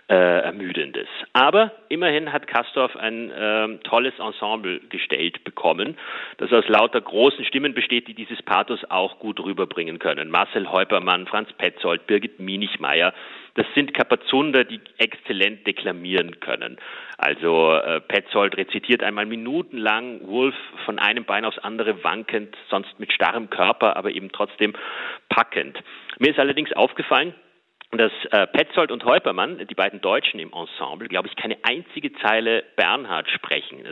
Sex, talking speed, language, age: male, 140 wpm, German, 40-59